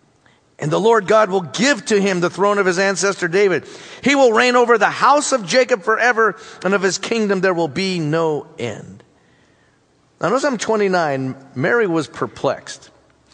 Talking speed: 175 wpm